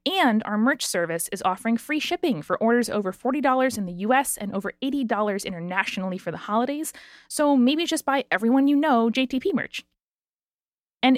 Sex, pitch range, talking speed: female, 195-255 Hz, 170 wpm